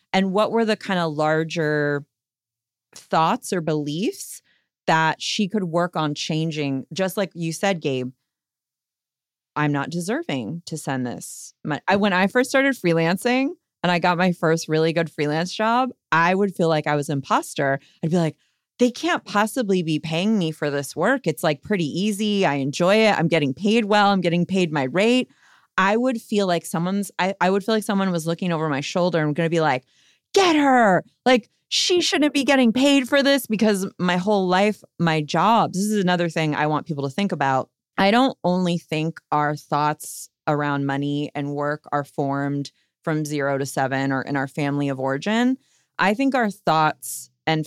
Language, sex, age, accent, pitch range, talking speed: English, female, 30-49, American, 150-200 Hz, 190 wpm